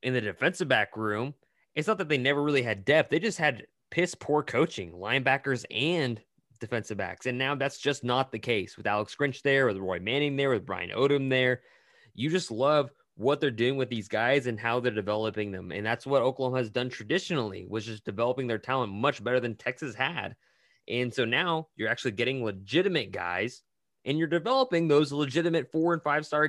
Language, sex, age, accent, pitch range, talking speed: English, male, 20-39, American, 110-145 Hz, 200 wpm